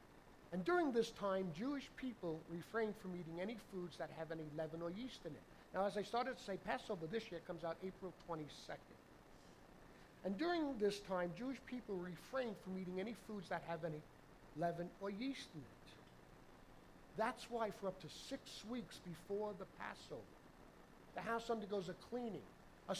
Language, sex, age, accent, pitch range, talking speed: English, male, 60-79, American, 175-235 Hz, 175 wpm